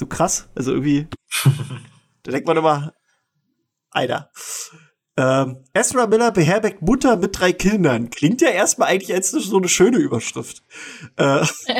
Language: German